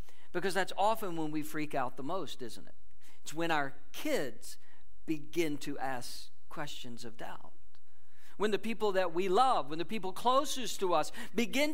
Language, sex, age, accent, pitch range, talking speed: English, male, 50-69, American, 145-210 Hz, 175 wpm